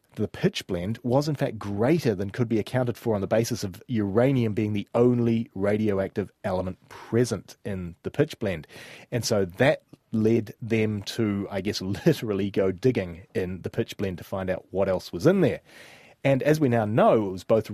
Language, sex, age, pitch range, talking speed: English, male, 30-49, 100-130 Hz, 195 wpm